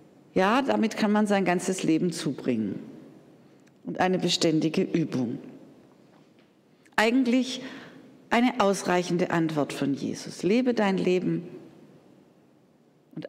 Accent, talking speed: German, 100 wpm